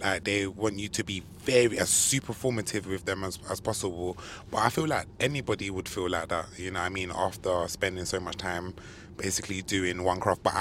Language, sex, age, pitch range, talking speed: English, male, 20-39, 90-100 Hz, 220 wpm